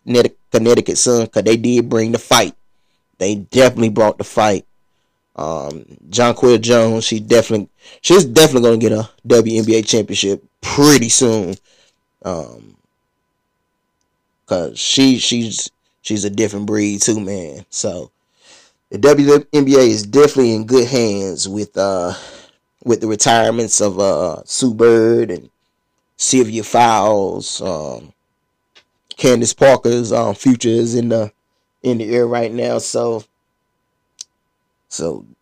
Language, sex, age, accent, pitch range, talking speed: English, male, 20-39, American, 105-125 Hz, 125 wpm